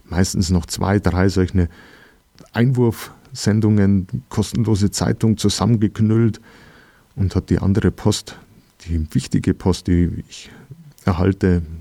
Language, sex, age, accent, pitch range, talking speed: German, male, 50-69, German, 90-105 Hz, 100 wpm